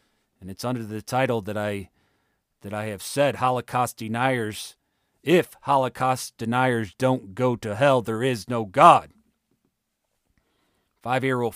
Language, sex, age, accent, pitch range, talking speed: English, male, 40-59, American, 125-195 Hz, 130 wpm